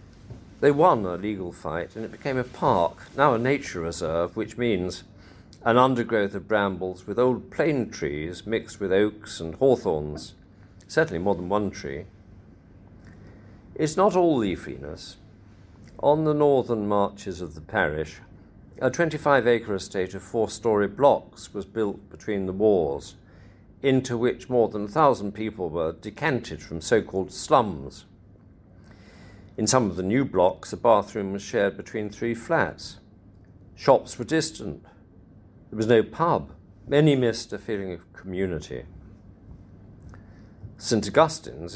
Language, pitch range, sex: English, 95-115 Hz, male